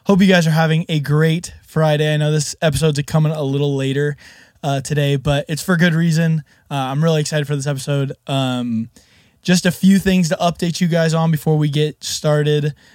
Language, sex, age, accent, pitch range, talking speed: English, male, 20-39, American, 140-170 Hz, 205 wpm